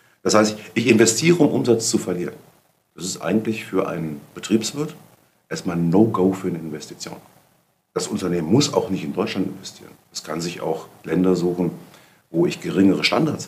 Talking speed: 170 wpm